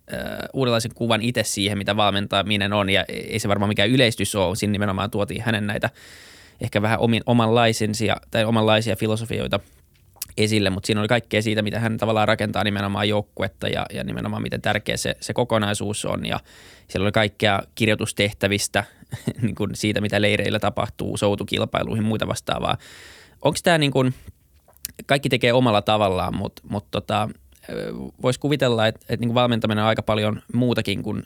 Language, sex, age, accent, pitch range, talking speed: Finnish, male, 20-39, native, 100-115 Hz, 160 wpm